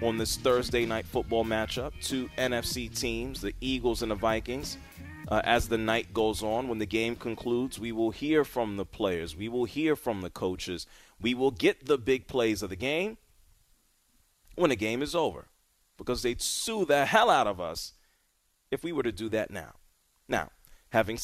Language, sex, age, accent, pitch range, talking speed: English, male, 30-49, American, 110-130 Hz, 190 wpm